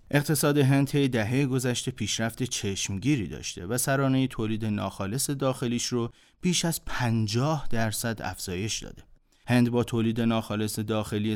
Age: 30-49